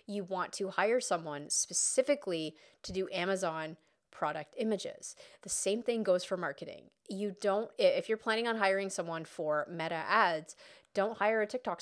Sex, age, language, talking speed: female, 30-49, English, 160 wpm